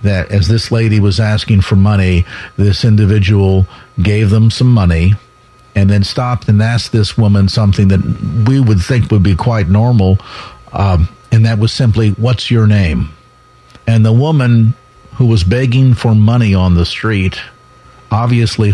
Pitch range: 100-125 Hz